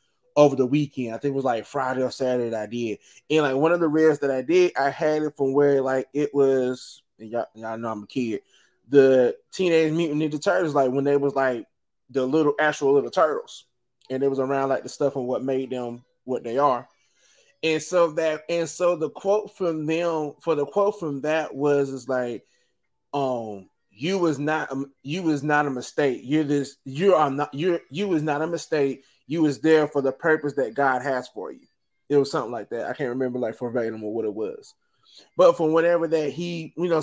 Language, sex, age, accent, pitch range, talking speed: English, male, 20-39, American, 135-160 Hz, 220 wpm